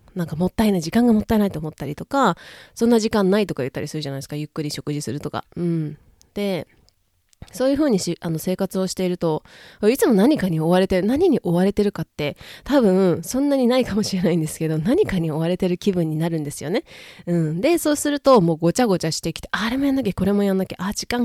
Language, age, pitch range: Japanese, 20-39, 165-225 Hz